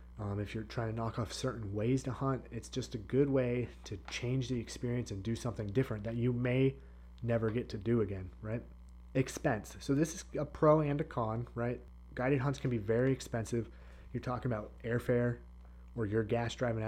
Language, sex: English, male